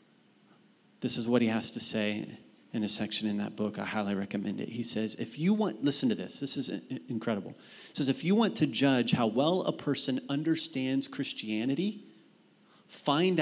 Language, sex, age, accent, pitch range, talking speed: English, male, 30-49, American, 120-170 Hz, 190 wpm